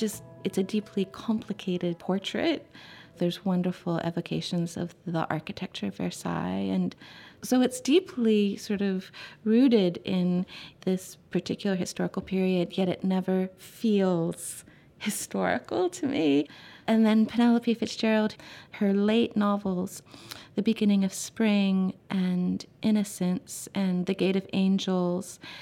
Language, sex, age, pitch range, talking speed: English, female, 30-49, 180-215 Hz, 115 wpm